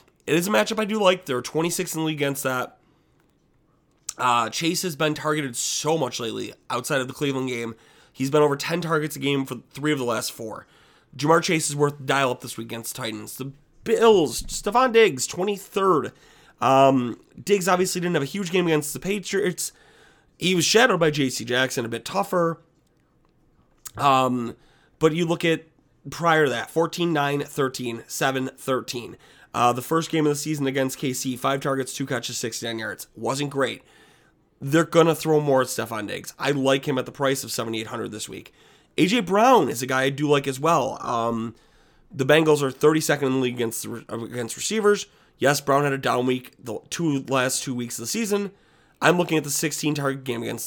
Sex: male